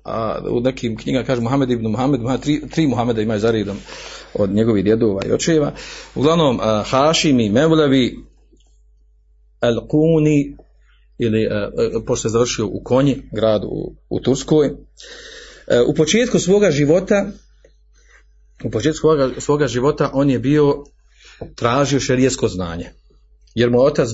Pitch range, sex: 110-150 Hz, male